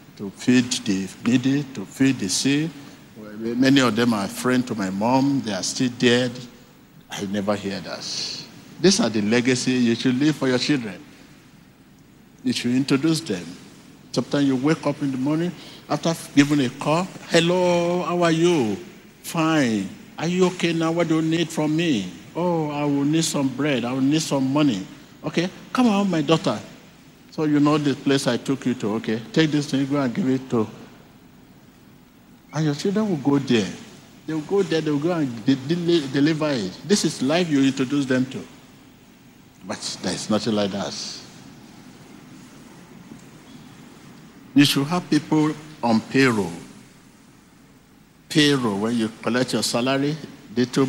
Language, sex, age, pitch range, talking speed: English, male, 60-79, 125-155 Hz, 165 wpm